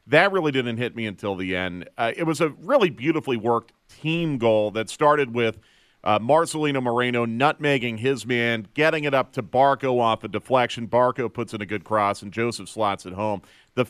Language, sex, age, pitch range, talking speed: English, male, 40-59, 115-145 Hz, 200 wpm